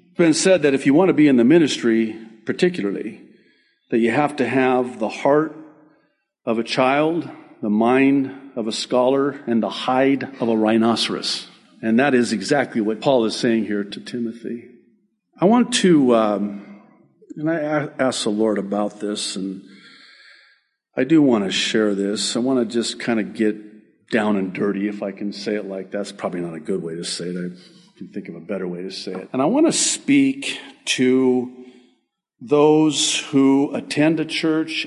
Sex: male